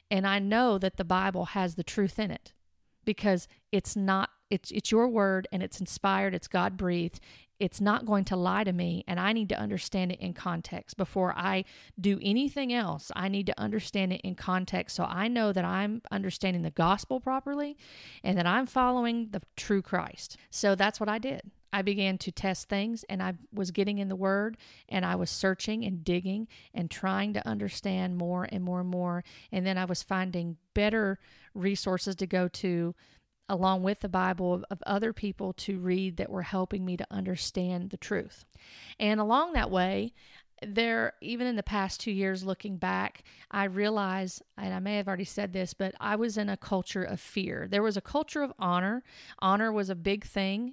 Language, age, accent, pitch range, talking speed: English, 40-59, American, 185-205 Hz, 200 wpm